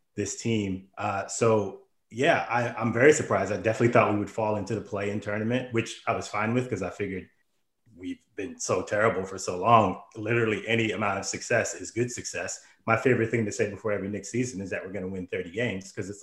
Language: English